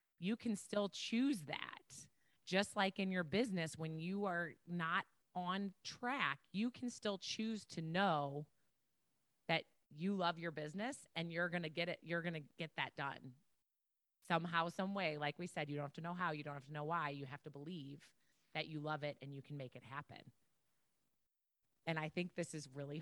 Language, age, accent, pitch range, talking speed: English, 30-49, American, 150-195 Hz, 195 wpm